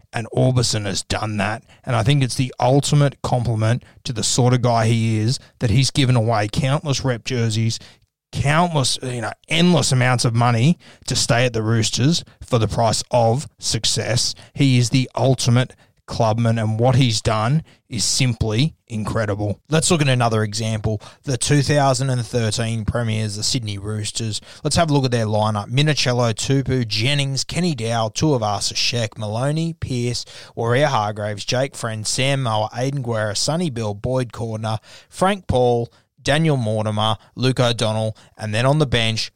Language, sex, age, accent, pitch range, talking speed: English, male, 20-39, Australian, 110-130 Hz, 165 wpm